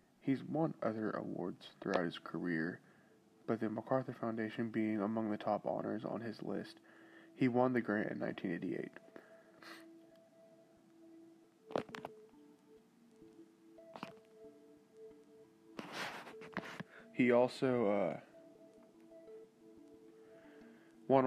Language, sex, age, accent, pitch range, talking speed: English, male, 20-39, American, 110-120 Hz, 80 wpm